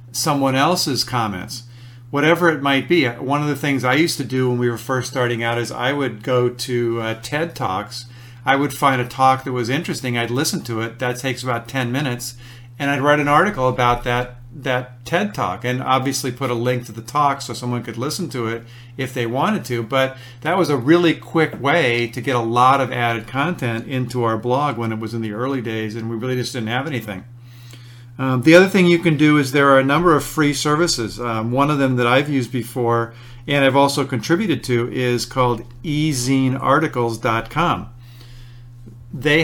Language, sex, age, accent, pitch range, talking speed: English, male, 50-69, American, 120-140 Hz, 210 wpm